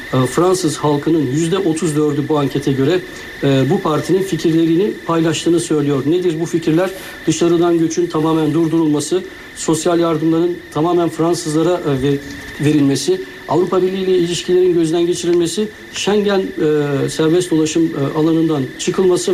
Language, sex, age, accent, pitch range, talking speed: Turkish, male, 60-79, native, 150-180 Hz, 110 wpm